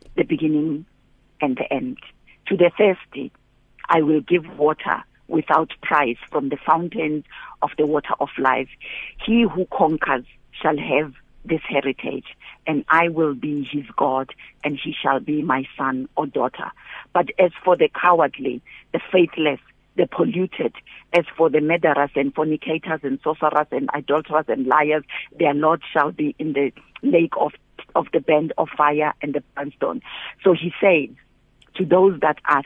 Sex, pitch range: female, 140-165 Hz